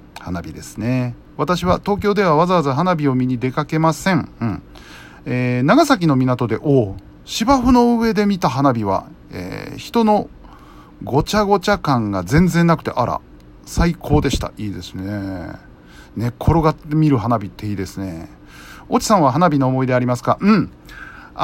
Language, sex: Japanese, male